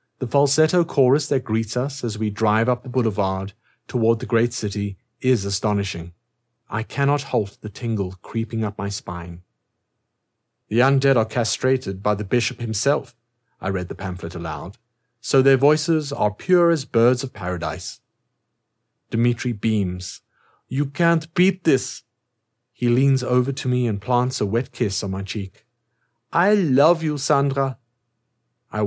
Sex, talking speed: male, 155 wpm